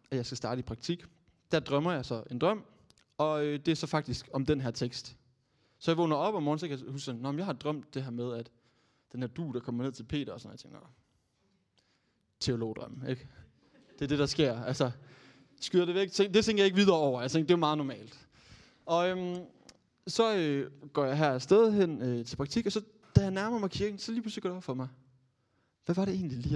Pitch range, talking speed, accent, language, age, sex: 125-165 Hz, 245 wpm, native, Danish, 20-39, male